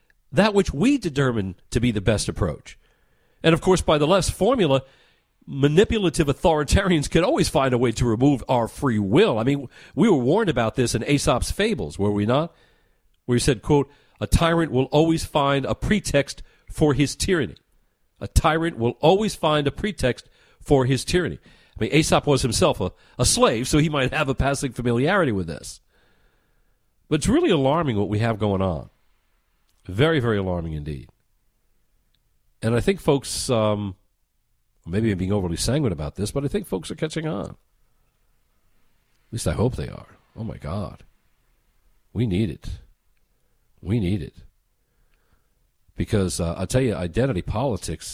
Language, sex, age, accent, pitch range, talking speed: English, male, 50-69, American, 95-150 Hz, 170 wpm